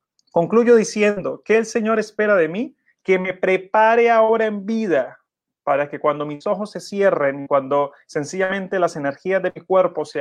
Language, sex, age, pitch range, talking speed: Spanish, male, 30-49, 145-190 Hz, 170 wpm